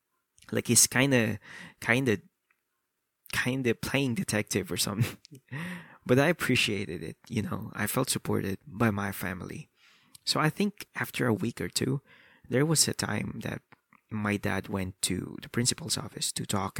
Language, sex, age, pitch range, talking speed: English, male, 20-39, 105-130 Hz, 165 wpm